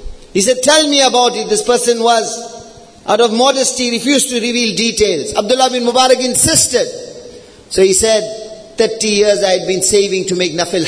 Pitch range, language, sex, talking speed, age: 210-265 Hz, English, male, 175 wpm, 50-69